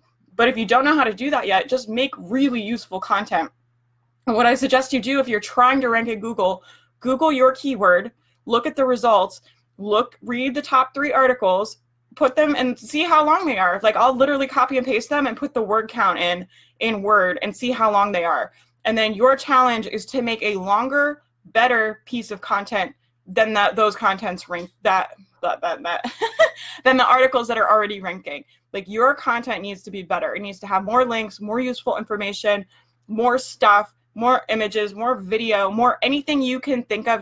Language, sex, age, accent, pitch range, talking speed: English, female, 20-39, American, 195-255 Hz, 205 wpm